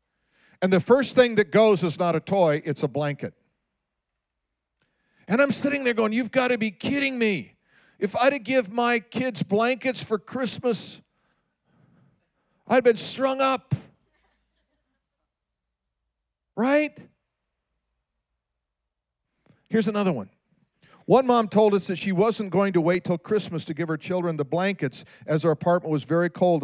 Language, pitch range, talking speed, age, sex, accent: English, 160-235 Hz, 145 wpm, 50-69, male, American